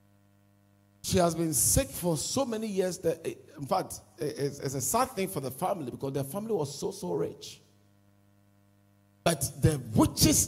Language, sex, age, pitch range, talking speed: English, male, 50-69, 100-150 Hz, 170 wpm